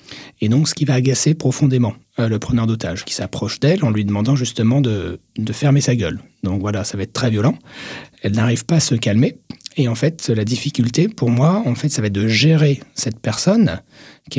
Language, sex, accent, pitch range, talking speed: French, male, French, 110-145 Hz, 220 wpm